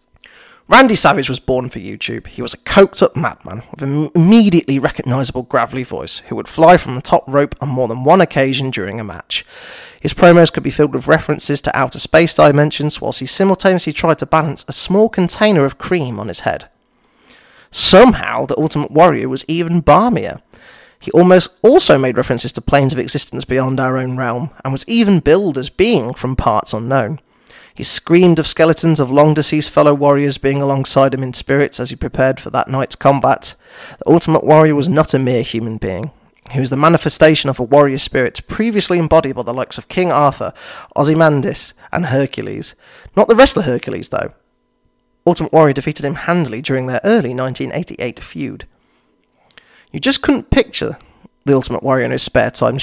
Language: English